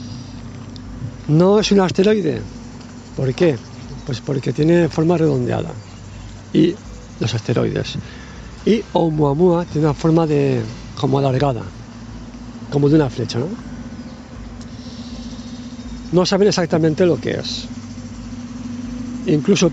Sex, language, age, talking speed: male, Spanish, 50-69, 105 wpm